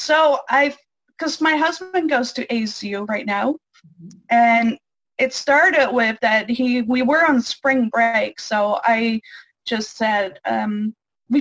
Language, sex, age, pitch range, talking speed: English, female, 30-49, 215-265 Hz, 140 wpm